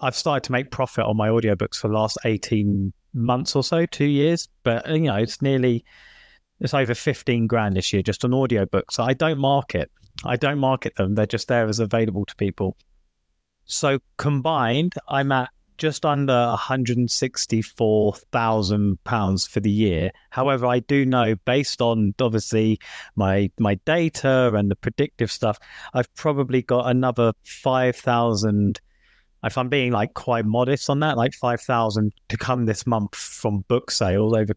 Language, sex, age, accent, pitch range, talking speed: English, male, 30-49, British, 105-130 Hz, 160 wpm